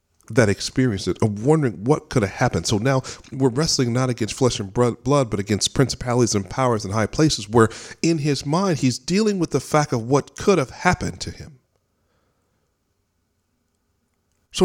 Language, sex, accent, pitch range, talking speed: English, male, American, 95-140 Hz, 170 wpm